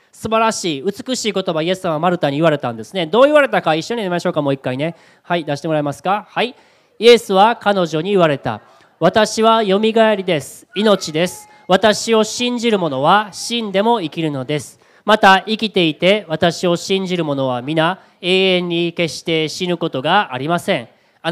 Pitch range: 165-225 Hz